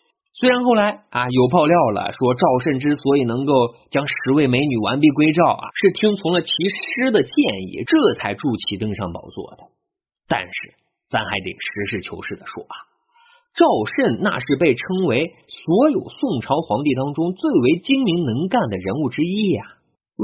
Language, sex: Chinese, male